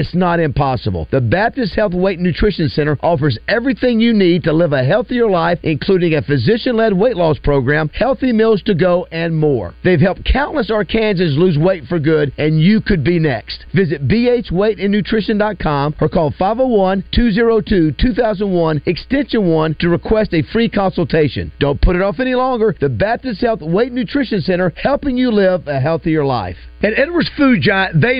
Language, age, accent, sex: English, 50-69, American, male